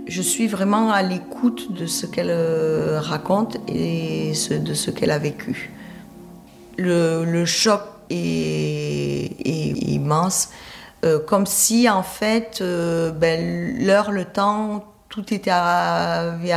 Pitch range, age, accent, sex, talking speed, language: 155-200 Hz, 40-59, French, female, 125 wpm, French